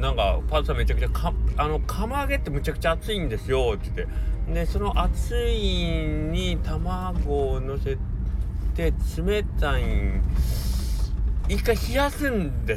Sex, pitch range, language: male, 65-75 Hz, Japanese